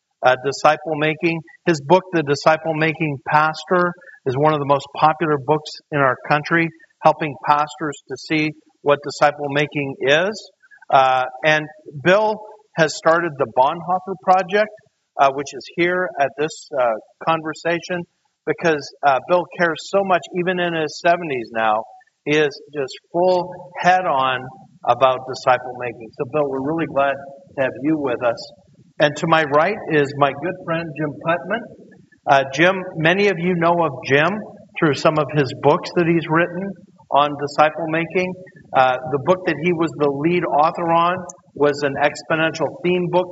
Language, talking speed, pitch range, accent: English, 160 wpm, 145-175 Hz, American